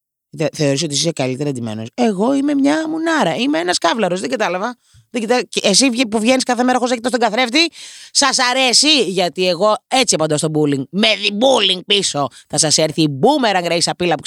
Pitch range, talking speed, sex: 165-235 Hz, 180 wpm, female